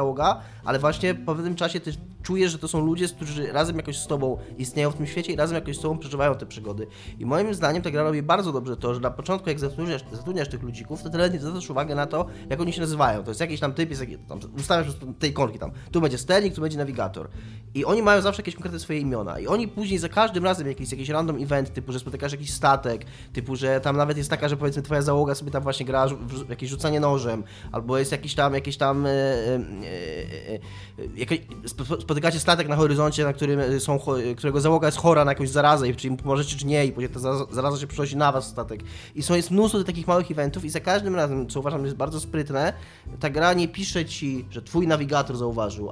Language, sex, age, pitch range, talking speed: Polish, male, 20-39, 125-160 Hz, 230 wpm